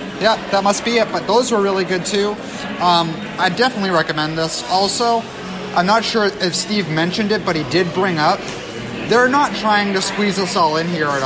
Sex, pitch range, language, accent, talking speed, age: male, 165-215 Hz, English, American, 210 wpm, 30-49